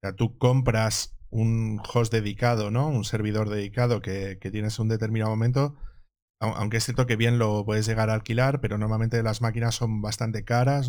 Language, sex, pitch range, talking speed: Spanish, male, 105-125 Hz, 175 wpm